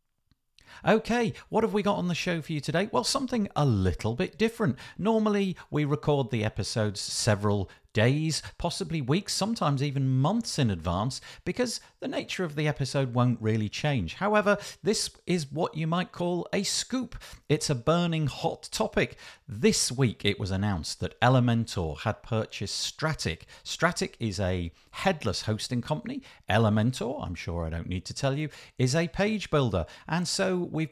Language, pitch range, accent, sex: English, 100-160 Hz, British, male